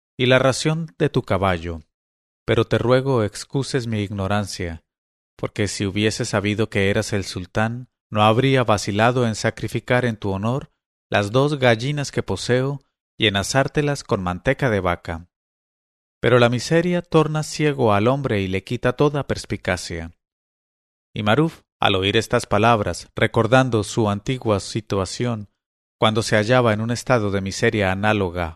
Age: 40-59